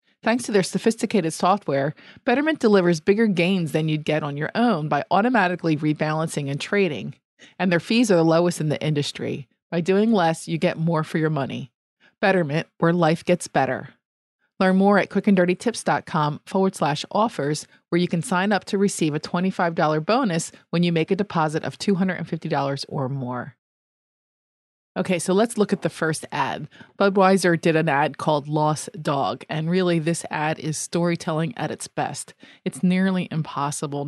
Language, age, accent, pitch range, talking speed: English, 30-49, American, 155-190 Hz, 170 wpm